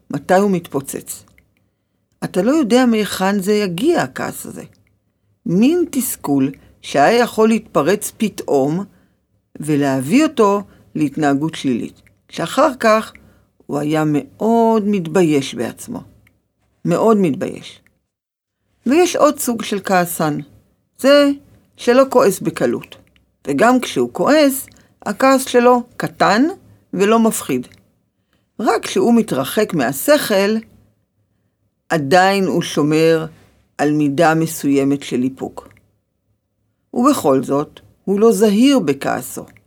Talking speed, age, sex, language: 100 wpm, 50-69, female, Hebrew